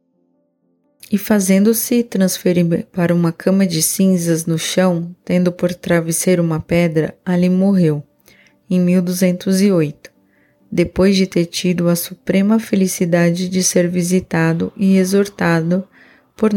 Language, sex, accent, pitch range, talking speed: Portuguese, female, Brazilian, 170-195 Hz, 115 wpm